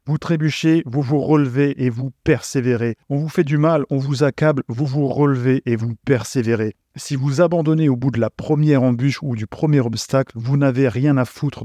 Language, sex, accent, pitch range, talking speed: French, male, French, 120-145 Hz, 205 wpm